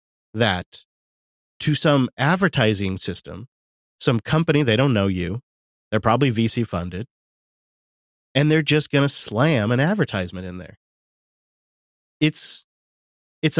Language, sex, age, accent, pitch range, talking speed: English, male, 30-49, American, 95-145 Hz, 120 wpm